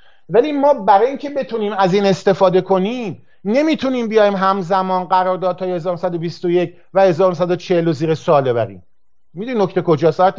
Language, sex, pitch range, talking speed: English, male, 165-210 Hz, 125 wpm